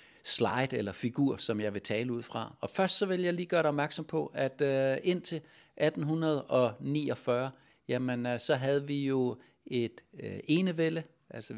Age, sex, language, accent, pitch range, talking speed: 60-79, male, Danish, native, 115-150 Hz, 170 wpm